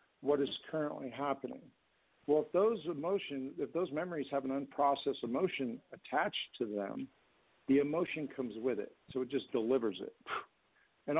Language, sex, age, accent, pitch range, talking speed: English, male, 60-79, American, 125-150 Hz, 155 wpm